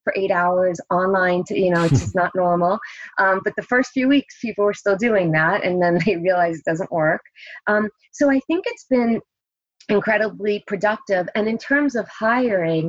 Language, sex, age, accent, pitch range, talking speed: English, female, 30-49, American, 185-215 Hz, 195 wpm